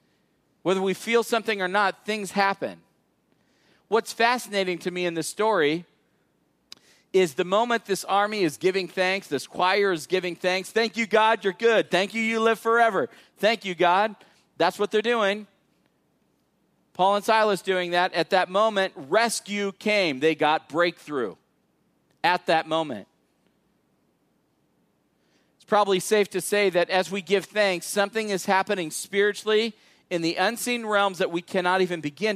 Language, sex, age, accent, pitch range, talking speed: English, male, 40-59, American, 165-200 Hz, 155 wpm